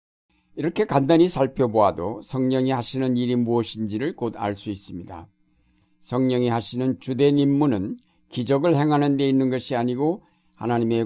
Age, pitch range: 60-79, 110-145 Hz